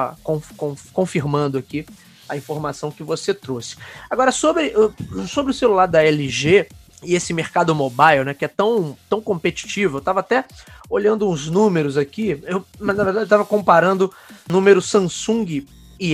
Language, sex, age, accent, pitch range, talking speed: Portuguese, male, 20-39, Brazilian, 155-225 Hz, 155 wpm